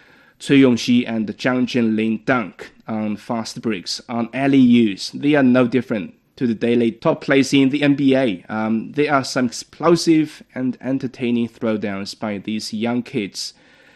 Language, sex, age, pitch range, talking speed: English, male, 20-39, 115-140 Hz, 150 wpm